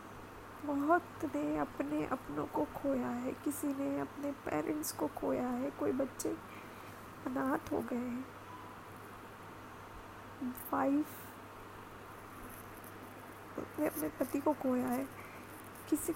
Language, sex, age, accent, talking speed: Hindi, female, 20-39, native, 110 wpm